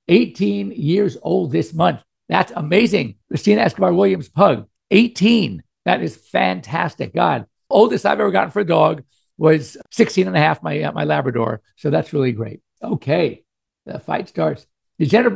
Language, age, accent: English, 50-69, American